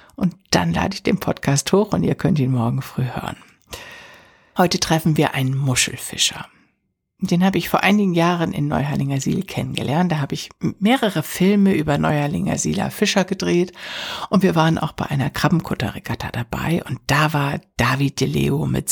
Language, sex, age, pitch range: German, female, 60-79, 150-195 Hz